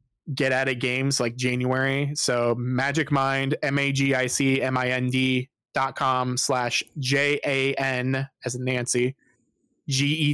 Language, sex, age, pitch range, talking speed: English, male, 20-39, 125-140 Hz, 155 wpm